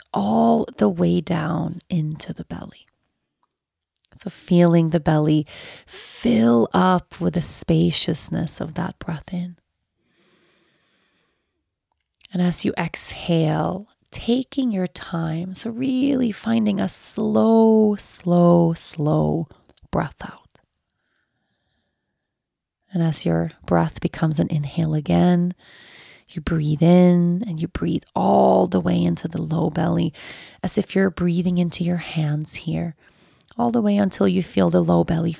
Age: 30-49